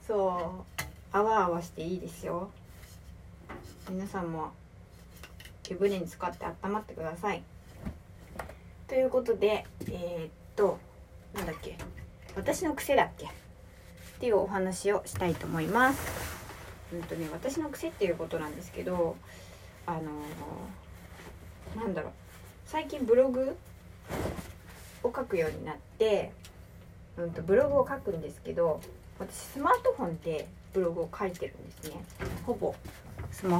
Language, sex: Japanese, female